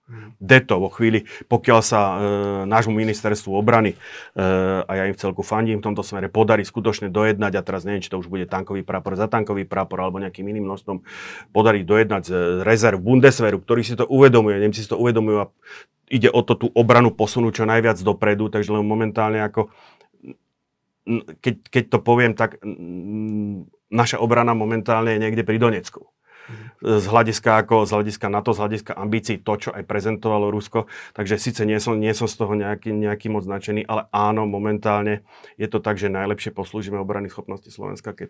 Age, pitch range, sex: 40-59, 95-110 Hz, male